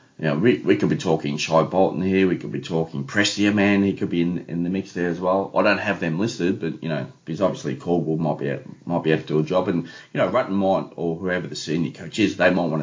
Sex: male